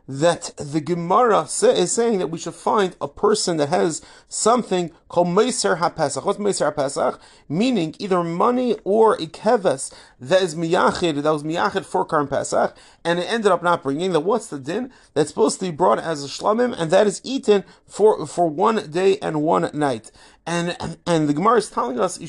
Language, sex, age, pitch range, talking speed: English, male, 30-49, 160-205 Hz, 200 wpm